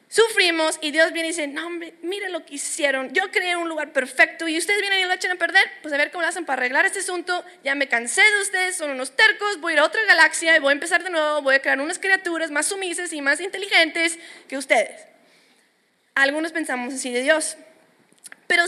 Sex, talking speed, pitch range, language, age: female, 230 wpm, 285-360 Hz, English, 20-39